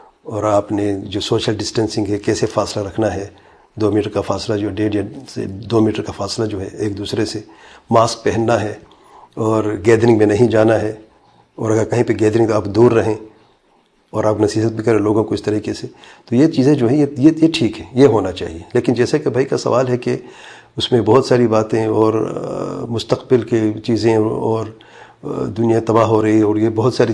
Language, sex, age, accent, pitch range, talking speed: English, male, 40-59, Indian, 105-125 Hz, 200 wpm